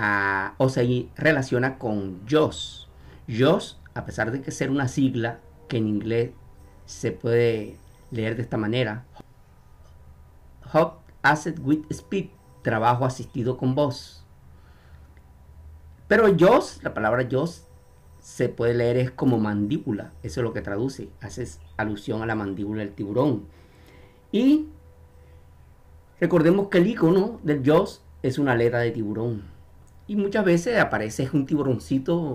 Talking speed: 135 wpm